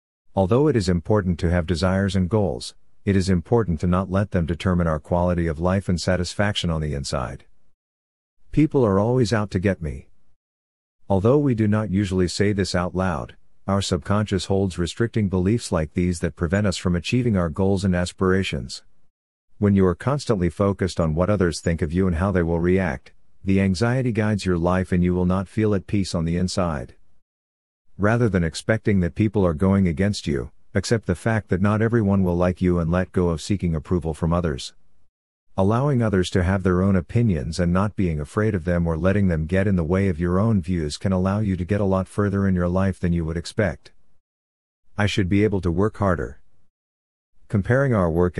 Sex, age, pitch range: male, 50-69, 85-100 Hz